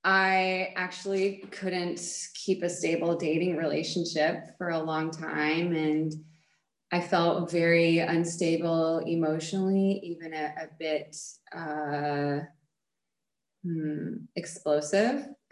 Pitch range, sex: 155-190 Hz, female